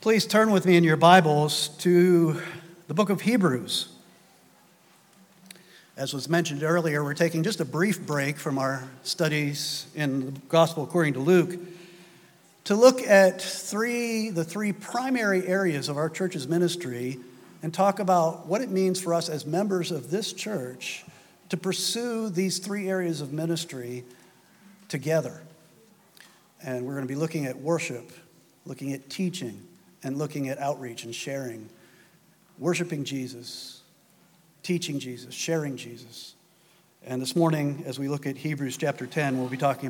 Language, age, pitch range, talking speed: English, 50-69, 145-190 Hz, 150 wpm